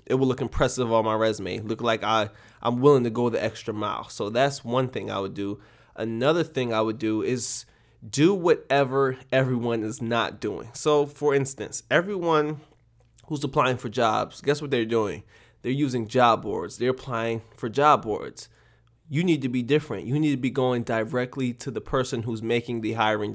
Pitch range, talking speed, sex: 115-135 Hz, 190 wpm, male